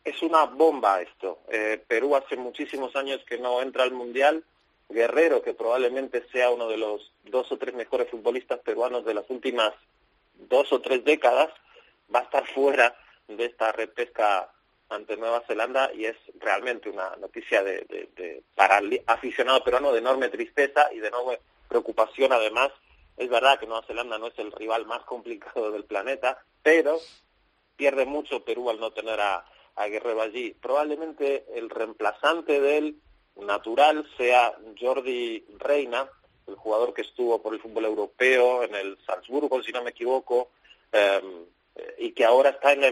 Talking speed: 165 wpm